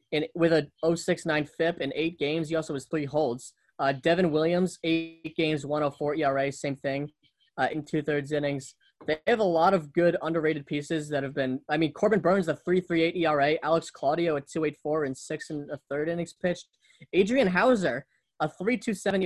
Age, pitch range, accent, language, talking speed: 10-29, 135-170 Hz, American, English, 190 wpm